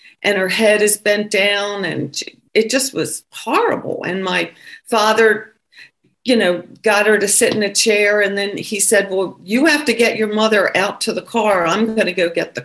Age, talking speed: 50-69, 210 wpm